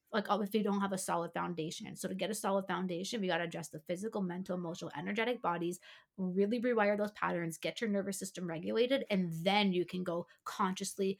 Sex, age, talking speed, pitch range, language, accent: female, 20-39, 215 wpm, 175-215 Hz, English, American